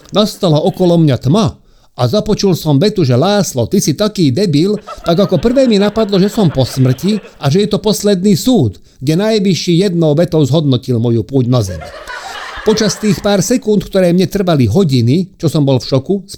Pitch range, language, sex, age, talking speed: 120-175 Hz, Slovak, male, 50-69, 190 wpm